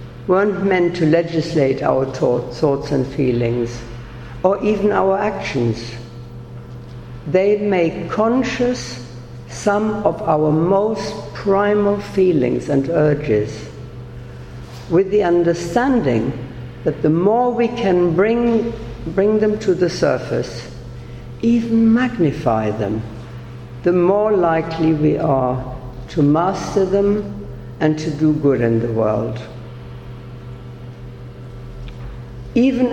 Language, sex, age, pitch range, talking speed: English, female, 60-79, 120-185 Hz, 100 wpm